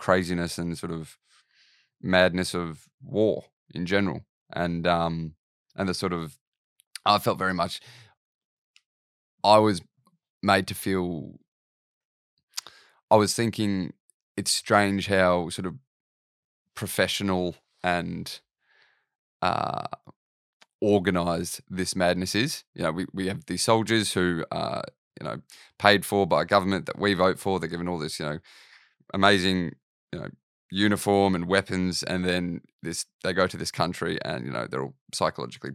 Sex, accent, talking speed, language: male, Australian, 145 wpm, English